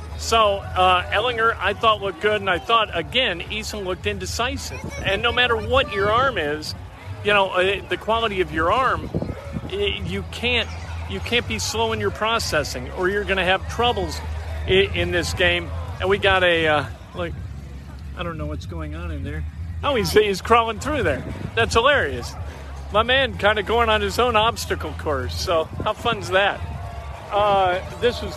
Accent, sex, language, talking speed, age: American, male, English, 185 wpm, 50-69